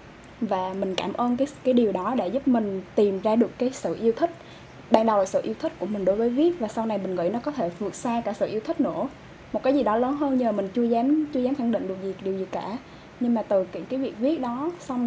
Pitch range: 200-270 Hz